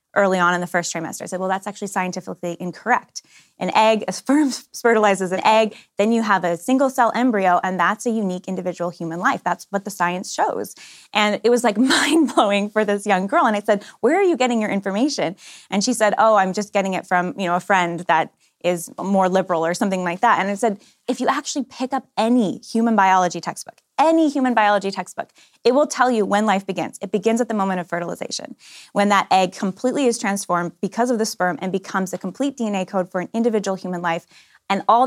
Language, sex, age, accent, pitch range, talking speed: English, female, 10-29, American, 185-230 Hz, 225 wpm